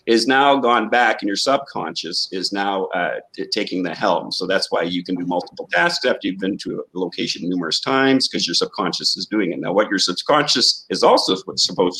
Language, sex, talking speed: English, male, 215 wpm